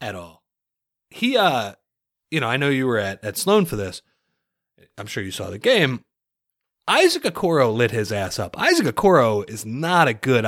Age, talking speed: 30-49, 190 wpm